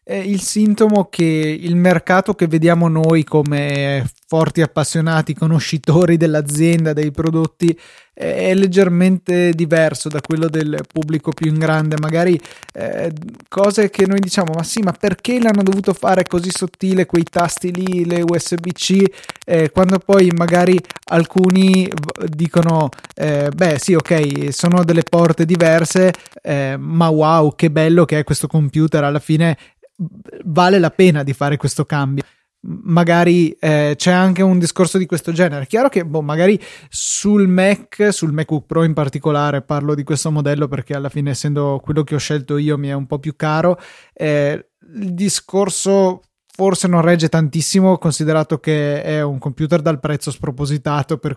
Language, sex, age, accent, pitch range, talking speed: Italian, male, 20-39, native, 155-180 Hz, 155 wpm